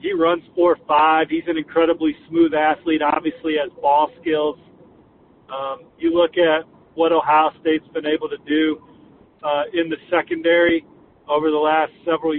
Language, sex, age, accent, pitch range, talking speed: English, male, 40-59, American, 150-175 Hz, 160 wpm